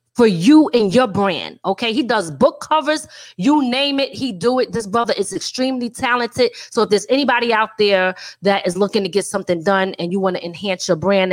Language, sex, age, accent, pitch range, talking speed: English, female, 30-49, American, 195-285 Hz, 215 wpm